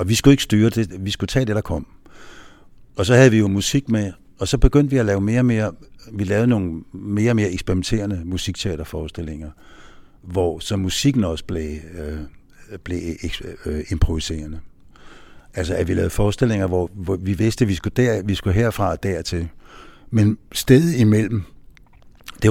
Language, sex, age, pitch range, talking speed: Danish, male, 60-79, 85-110 Hz, 180 wpm